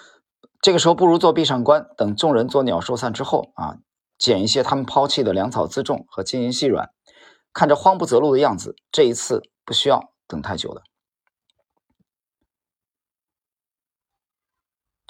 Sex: male